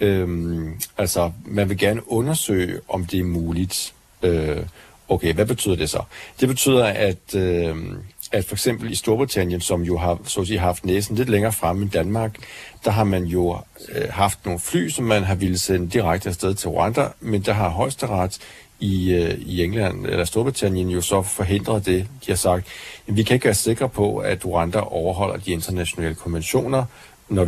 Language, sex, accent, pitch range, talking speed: Danish, male, native, 90-110 Hz, 185 wpm